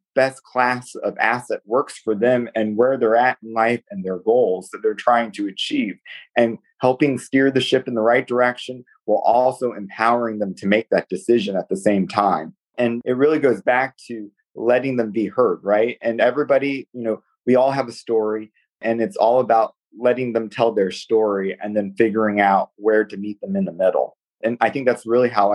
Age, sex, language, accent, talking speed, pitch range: 30-49, male, English, American, 205 wpm, 110-130 Hz